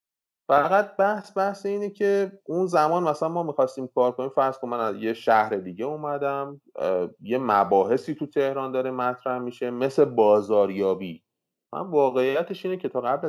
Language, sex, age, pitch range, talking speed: Persian, male, 30-49, 110-155 Hz, 160 wpm